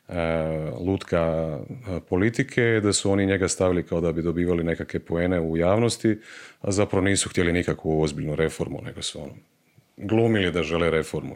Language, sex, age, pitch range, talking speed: Croatian, male, 40-59, 85-105 Hz, 165 wpm